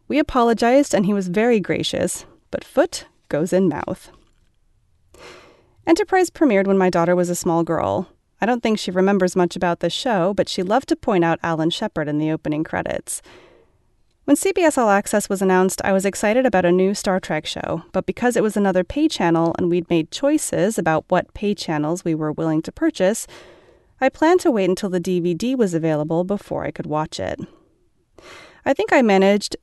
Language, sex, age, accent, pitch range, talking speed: English, female, 30-49, American, 175-245 Hz, 190 wpm